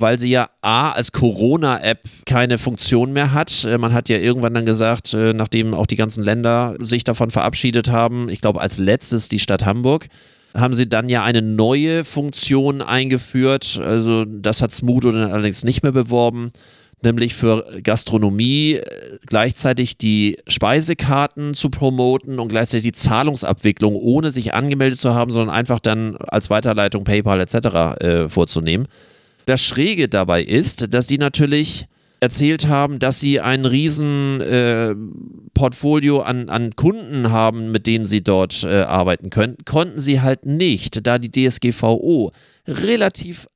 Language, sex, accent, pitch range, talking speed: German, male, German, 110-145 Hz, 150 wpm